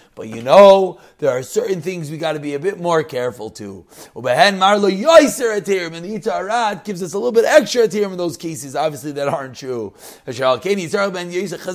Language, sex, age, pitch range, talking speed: English, male, 30-49, 170-215 Hz, 160 wpm